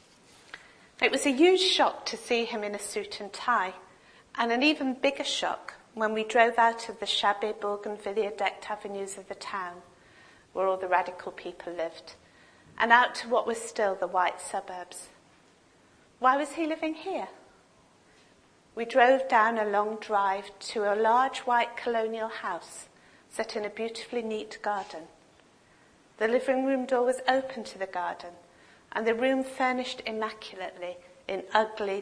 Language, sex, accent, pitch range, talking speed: English, female, British, 190-250 Hz, 160 wpm